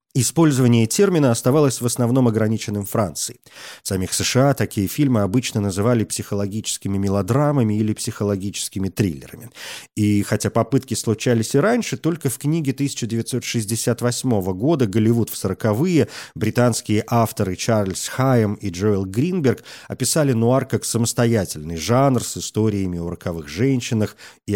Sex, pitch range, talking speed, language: male, 100-130 Hz, 125 wpm, Russian